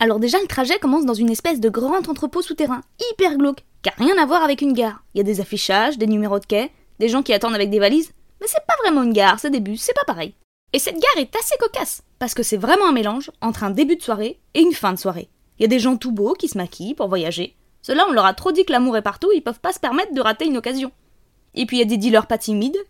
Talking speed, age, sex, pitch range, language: 290 wpm, 20-39, female, 225-320 Hz, French